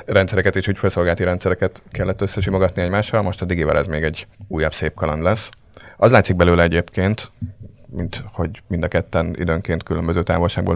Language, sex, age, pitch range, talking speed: Hungarian, male, 30-49, 85-95 Hz, 160 wpm